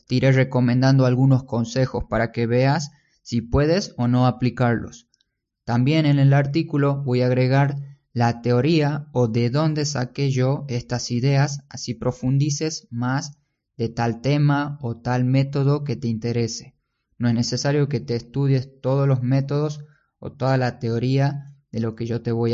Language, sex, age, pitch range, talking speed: Spanish, male, 10-29, 120-140 Hz, 160 wpm